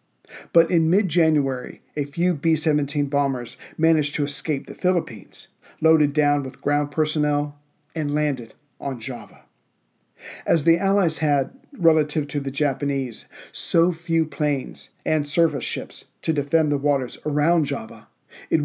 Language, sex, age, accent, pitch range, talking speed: English, male, 40-59, American, 140-160 Hz, 135 wpm